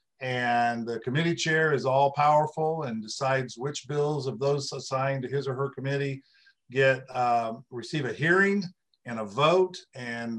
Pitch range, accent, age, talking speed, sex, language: 125-145 Hz, American, 50-69, 160 wpm, male, English